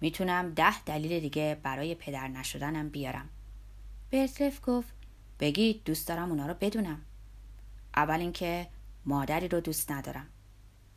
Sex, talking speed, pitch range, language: female, 120 wpm, 140-190 Hz, Persian